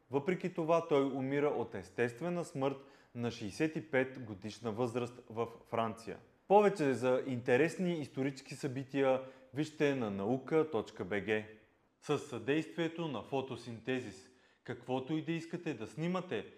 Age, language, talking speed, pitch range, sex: 30-49, Bulgarian, 110 wpm, 115-155 Hz, male